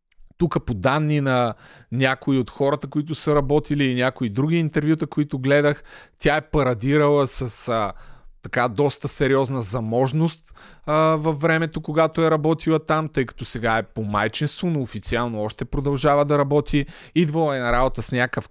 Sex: male